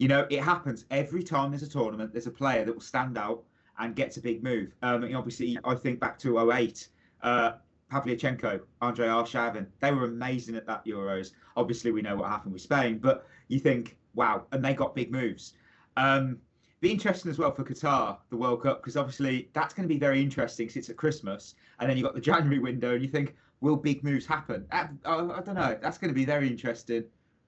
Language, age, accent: English, 30-49, British